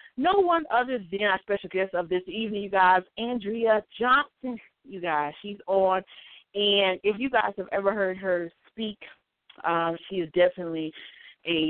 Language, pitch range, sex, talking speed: English, 170-225 Hz, female, 165 wpm